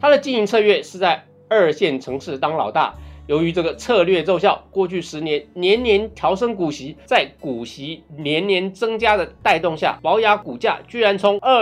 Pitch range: 170-235 Hz